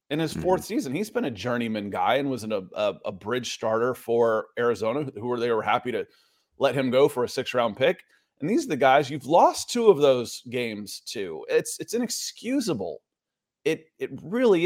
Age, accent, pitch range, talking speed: 30-49, American, 125-200 Hz, 205 wpm